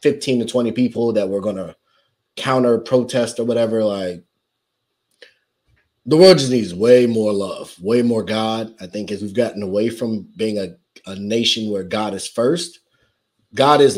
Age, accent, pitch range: 20-39, American, 105-125 Hz